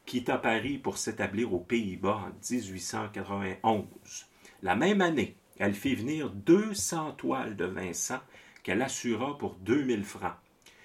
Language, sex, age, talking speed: French, male, 40-59, 125 wpm